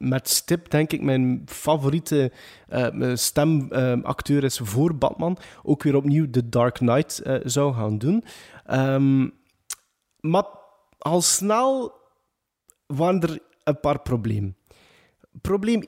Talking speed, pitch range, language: 115 wpm, 125-185 Hz, Dutch